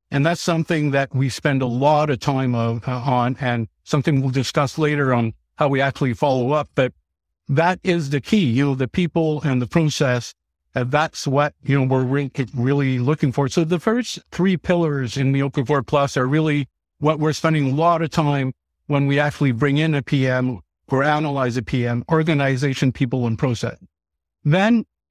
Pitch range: 125-150 Hz